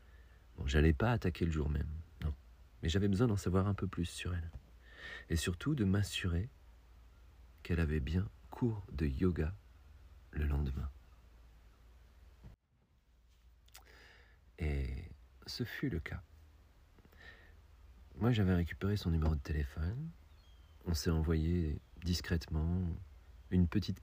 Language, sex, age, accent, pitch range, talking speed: French, male, 40-59, French, 75-90 Hz, 120 wpm